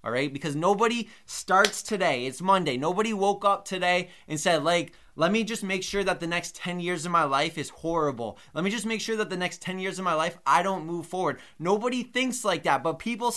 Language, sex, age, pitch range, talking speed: English, male, 20-39, 150-190 Hz, 240 wpm